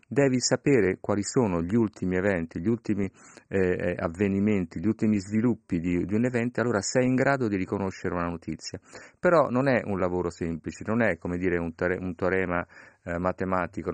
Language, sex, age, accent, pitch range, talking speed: Italian, male, 40-59, native, 90-110 Hz, 180 wpm